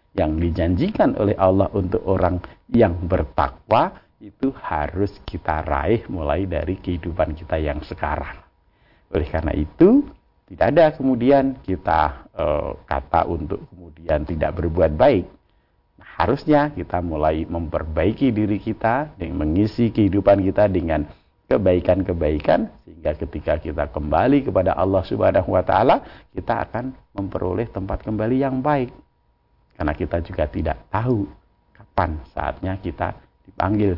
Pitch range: 80-100 Hz